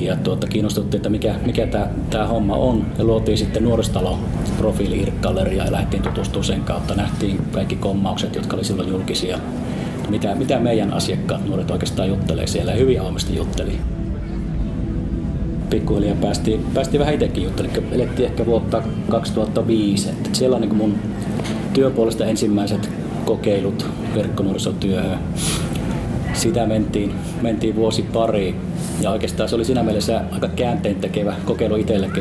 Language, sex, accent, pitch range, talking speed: Finnish, male, native, 95-115 Hz, 130 wpm